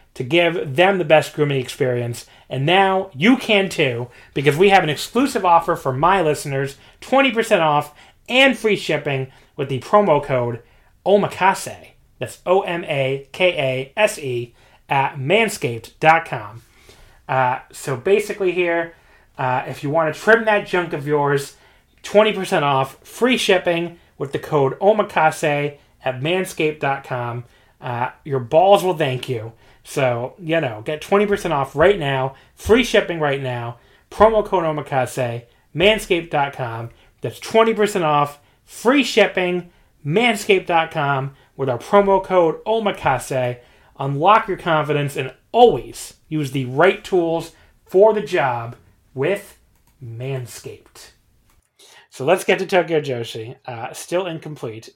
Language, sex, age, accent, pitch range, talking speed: English, male, 30-49, American, 130-190 Hz, 125 wpm